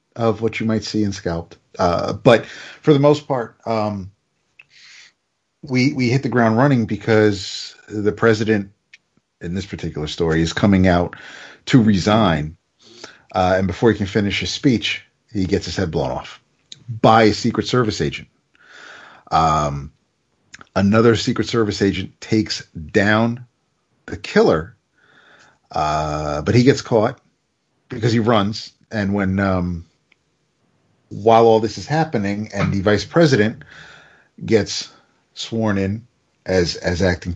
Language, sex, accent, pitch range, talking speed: English, male, American, 95-115 Hz, 140 wpm